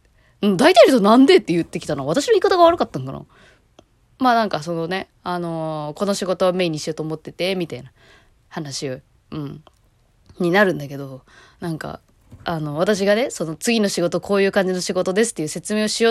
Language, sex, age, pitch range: Japanese, female, 20-39, 160-225 Hz